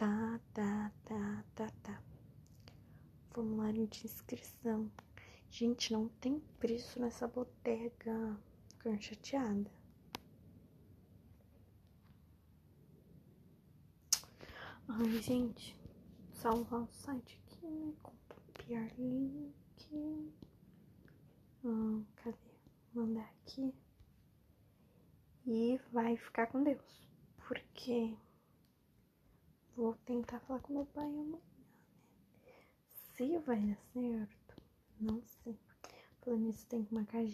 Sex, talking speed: female, 90 wpm